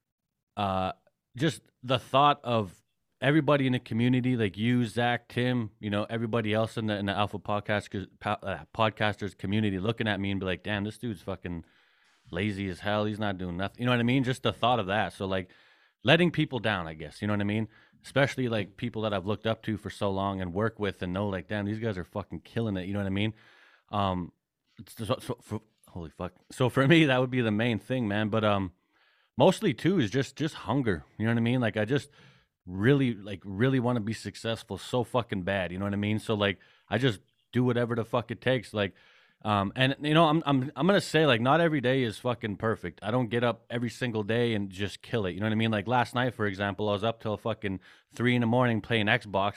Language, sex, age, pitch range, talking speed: English, male, 30-49, 100-125 Hz, 240 wpm